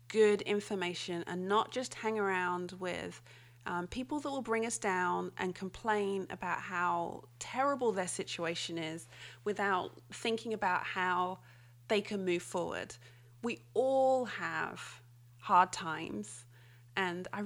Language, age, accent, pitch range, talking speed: English, 30-49, British, 175-215 Hz, 130 wpm